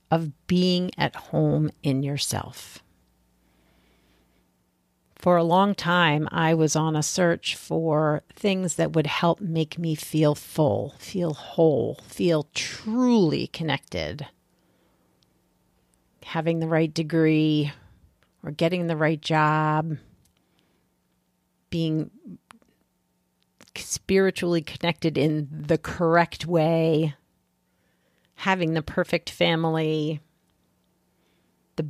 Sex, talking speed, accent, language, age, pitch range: female, 95 wpm, American, English, 40-59, 130-170 Hz